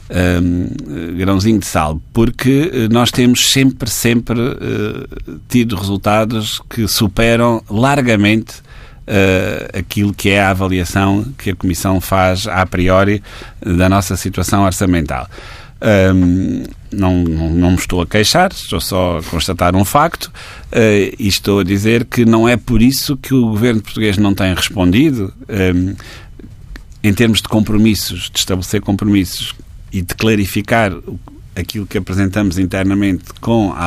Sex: male